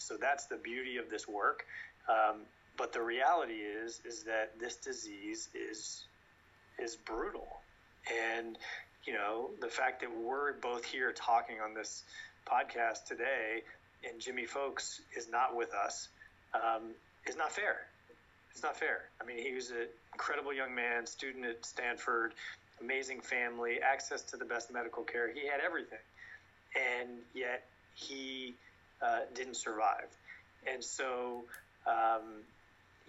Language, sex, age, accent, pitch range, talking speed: English, male, 30-49, American, 110-130 Hz, 140 wpm